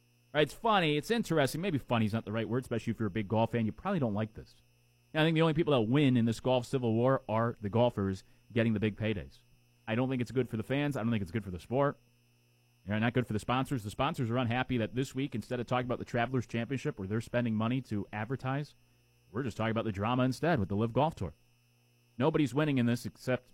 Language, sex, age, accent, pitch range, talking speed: English, male, 30-49, American, 110-135 Hz, 255 wpm